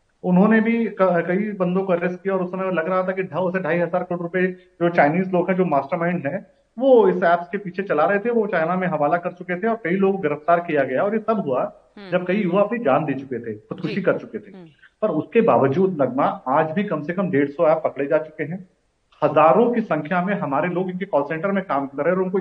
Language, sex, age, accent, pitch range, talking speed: English, male, 40-59, Indian, 160-205 Hz, 160 wpm